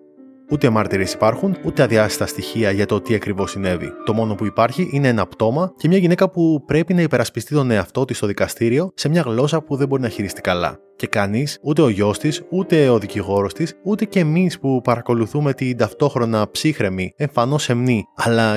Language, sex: Greek, male